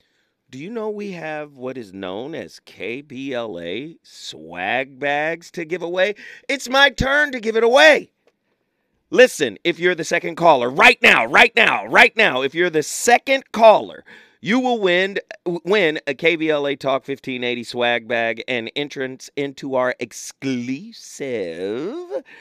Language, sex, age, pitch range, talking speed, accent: English, male, 40-59, 130-205 Hz, 145 wpm, American